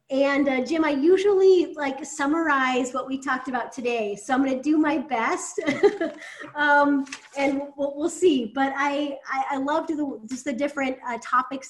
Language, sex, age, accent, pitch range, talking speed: English, female, 30-49, American, 235-275 Hz, 175 wpm